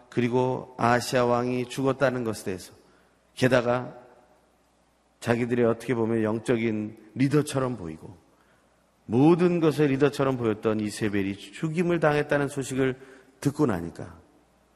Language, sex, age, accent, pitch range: Korean, male, 40-59, native, 105-150 Hz